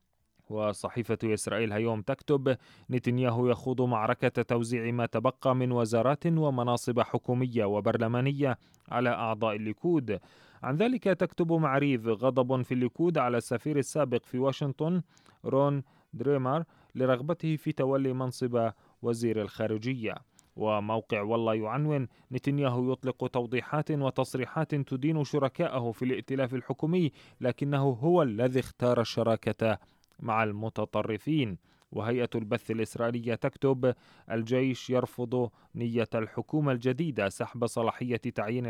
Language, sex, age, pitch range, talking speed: Arabic, male, 30-49, 115-135 Hz, 105 wpm